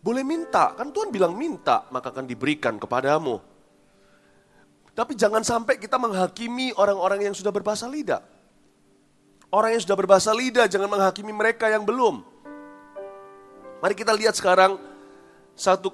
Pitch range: 150-220 Hz